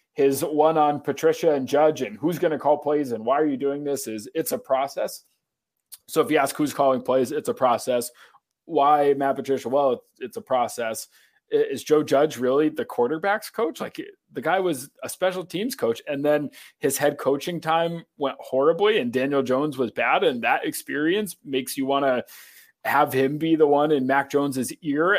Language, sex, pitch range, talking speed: English, male, 140-185 Hz, 200 wpm